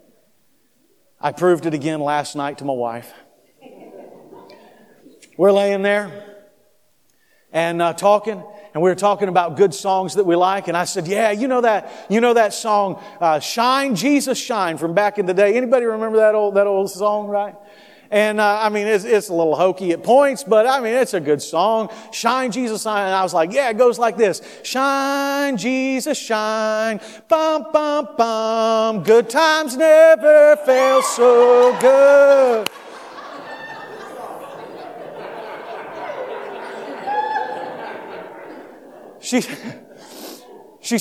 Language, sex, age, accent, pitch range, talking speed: English, male, 40-59, American, 200-260 Hz, 140 wpm